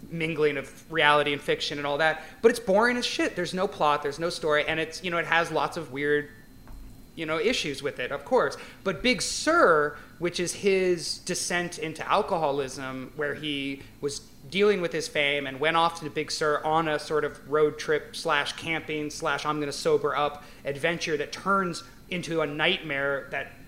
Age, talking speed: 30-49, 200 wpm